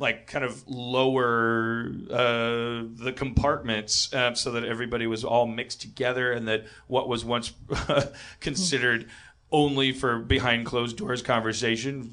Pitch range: 120-140 Hz